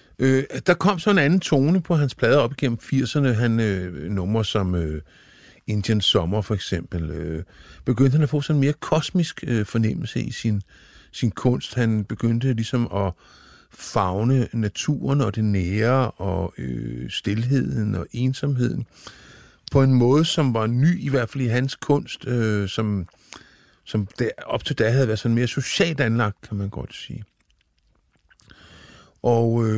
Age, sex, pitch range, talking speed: 50-69, male, 100-130 Hz, 160 wpm